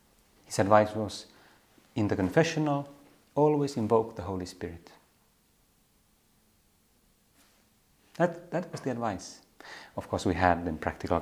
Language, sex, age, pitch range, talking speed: Finnish, male, 30-49, 90-120 Hz, 120 wpm